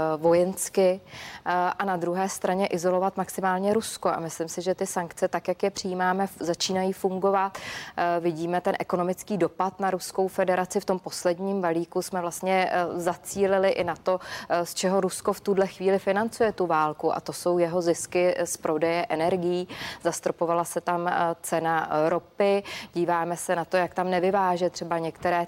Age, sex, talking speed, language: 20-39, female, 160 wpm, Czech